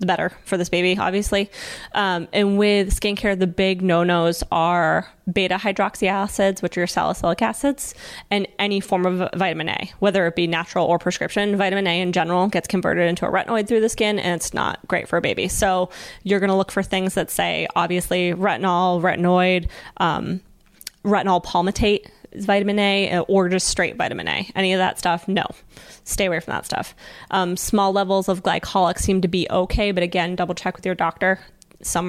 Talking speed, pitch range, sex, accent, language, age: 190 wpm, 175-200 Hz, female, American, English, 20-39